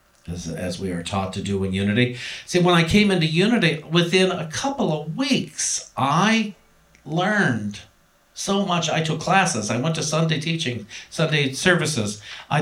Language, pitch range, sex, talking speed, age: English, 105-160 Hz, male, 165 wpm, 50-69